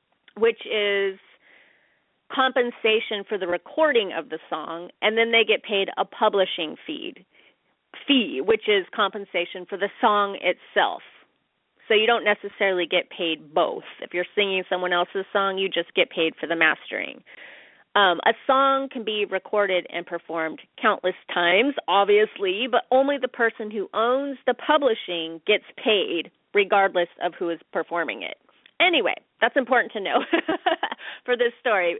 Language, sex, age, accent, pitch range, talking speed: English, female, 30-49, American, 185-260 Hz, 150 wpm